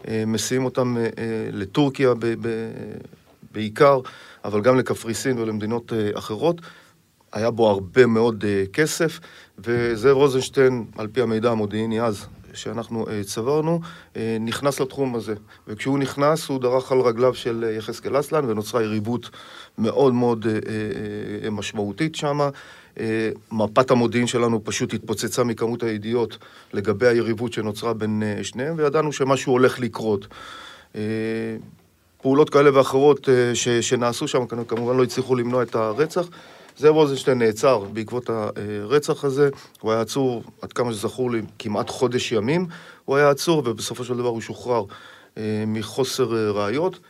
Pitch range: 110-130 Hz